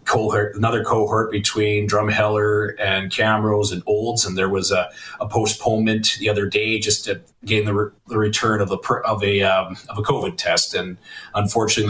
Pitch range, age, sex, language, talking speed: 100-110 Hz, 30-49, male, English, 175 wpm